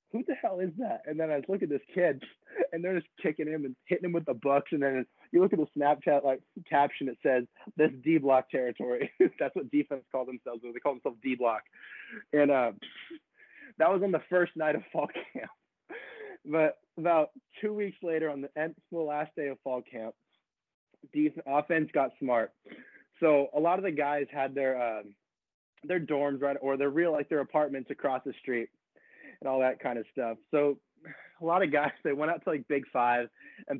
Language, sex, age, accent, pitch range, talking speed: English, male, 20-39, American, 130-180 Hz, 205 wpm